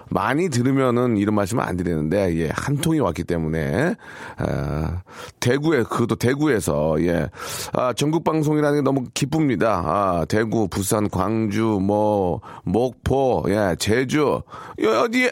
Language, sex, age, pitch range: Korean, male, 40-59, 105-140 Hz